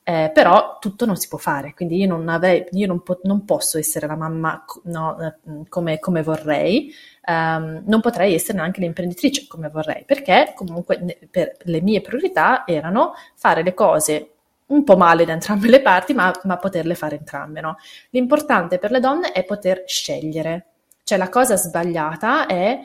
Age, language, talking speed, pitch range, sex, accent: 30-49, Italian, 175 wpm, 160-200 Hz, female, native